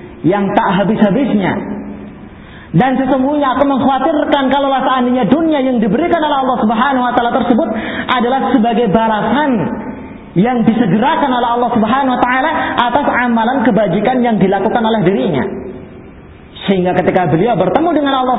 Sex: male